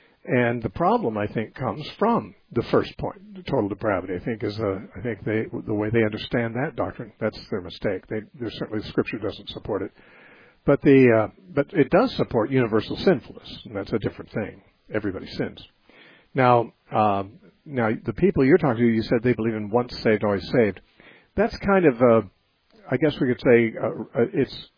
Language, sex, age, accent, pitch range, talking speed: English, male, 60-79, American, 110-135 Hz, 195 wpm